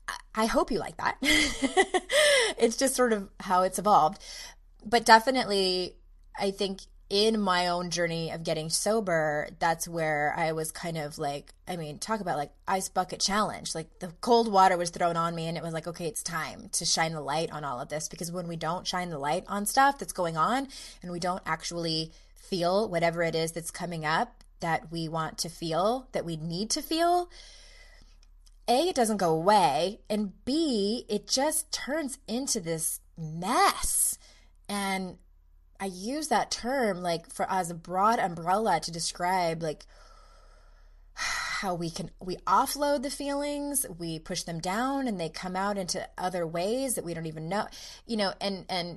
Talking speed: 180 wpm